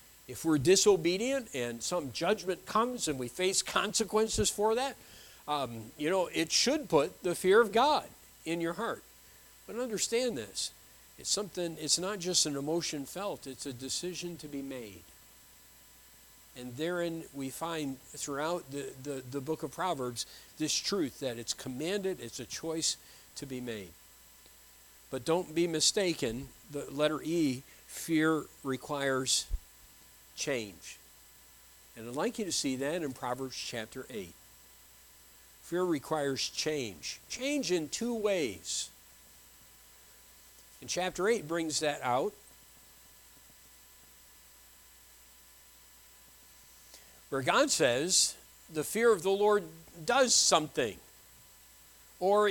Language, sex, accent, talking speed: English, male, American, 125 wpm